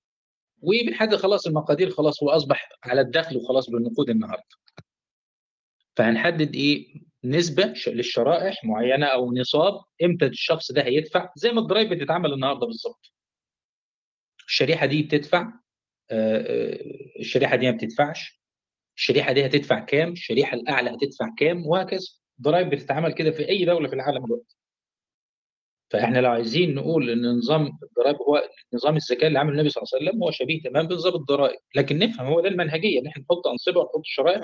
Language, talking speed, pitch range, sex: Arabic, 150 wpm, 130-185 Hz, male